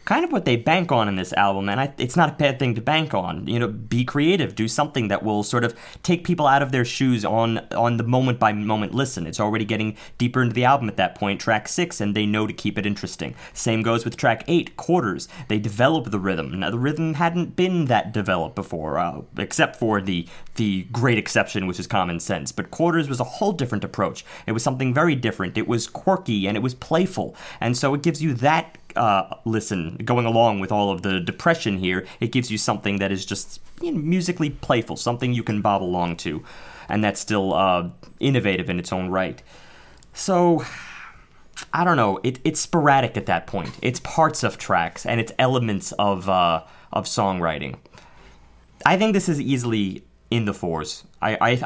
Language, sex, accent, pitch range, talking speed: English, male, American, 100-140 Hz, 210 wpm